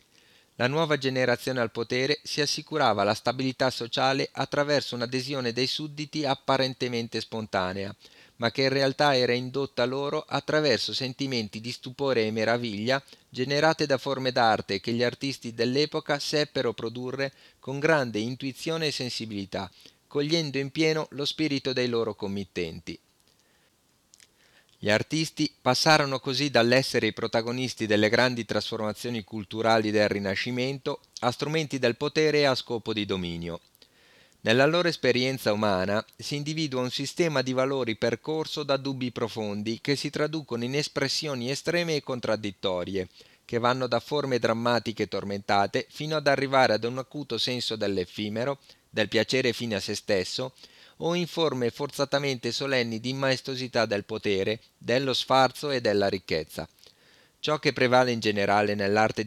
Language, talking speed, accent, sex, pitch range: Italian, 135 wpm, native, male, 110-140 Hz